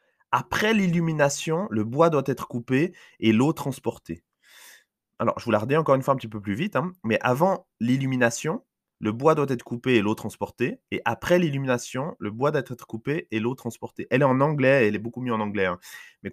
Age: 20-39